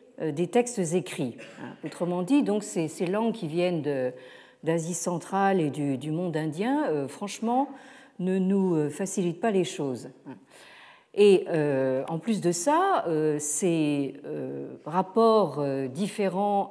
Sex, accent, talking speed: female, French, 135 wpm